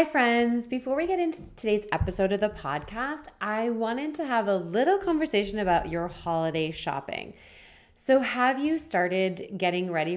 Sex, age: female, 20-39